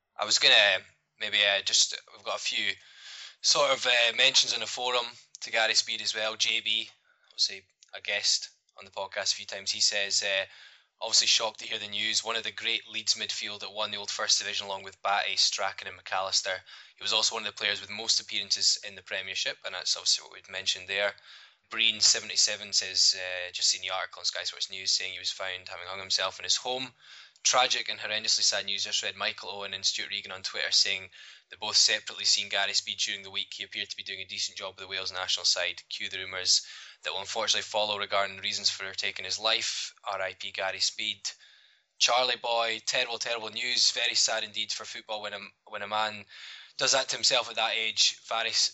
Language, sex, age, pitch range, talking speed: English, male, 10-29, 100-110 Hz, 220 wpm